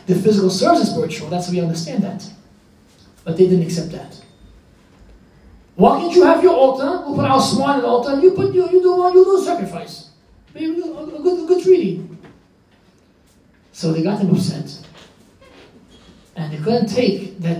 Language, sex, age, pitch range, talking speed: English, male, 30-49, 170-245 Hz, 180 wpm